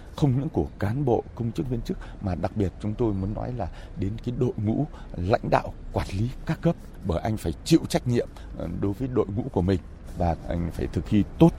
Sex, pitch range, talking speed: male, 90-125 Hz, 235 wpm